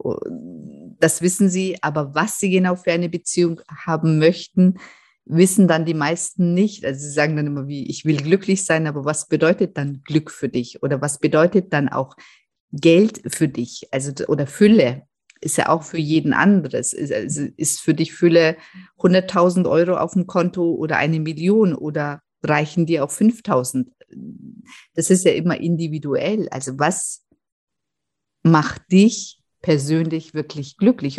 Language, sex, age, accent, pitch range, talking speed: German, female, 50-69, German, 155-190 Hz, 155 wpm